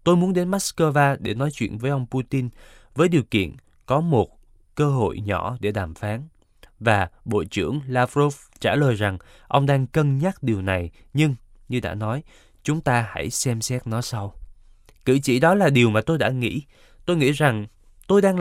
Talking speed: 190 wpm